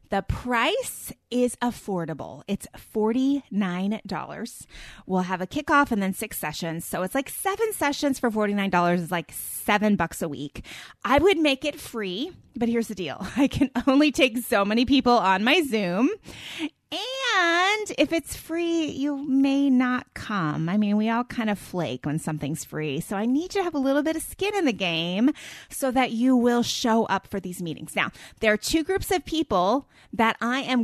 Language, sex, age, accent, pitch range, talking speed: English, female, 30-49, American, 190-260 Hz, 185 wpm